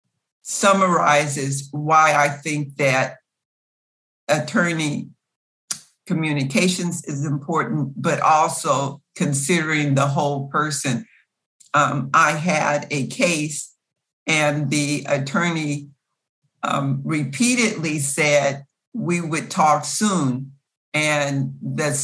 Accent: American